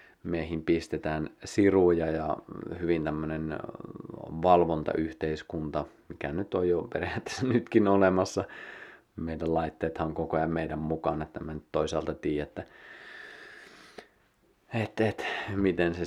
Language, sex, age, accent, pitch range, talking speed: Finnish, male, 30-49, native, 80-95 Hz, 115 wpm